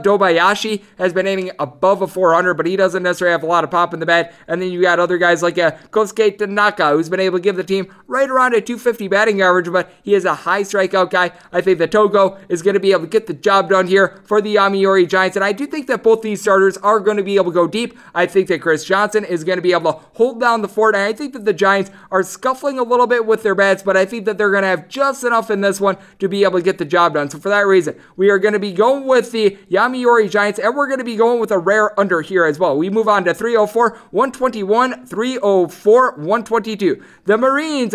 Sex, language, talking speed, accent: male, English, 270 wpm, American